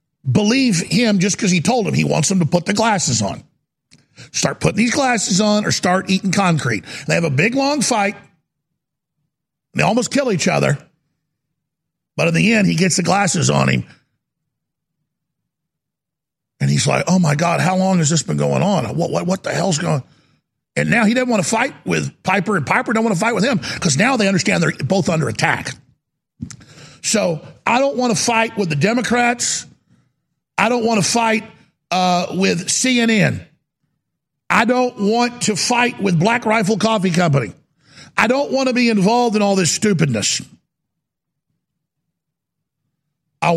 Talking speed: 180 wpm